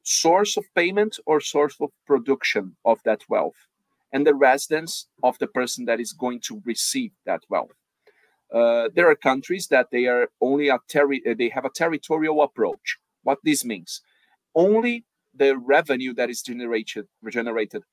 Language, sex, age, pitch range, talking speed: English, male, 40-59, 120-205 Hz, 160 wpm